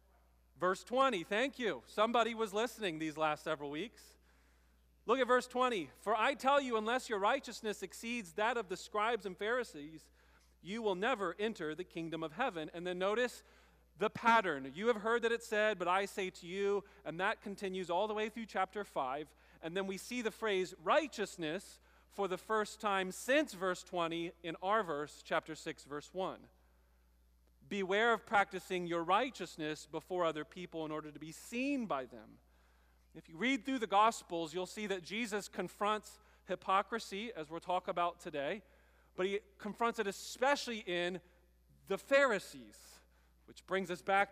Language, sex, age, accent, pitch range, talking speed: English, male, 40-59, American, 150-215 Hz, 170 wpm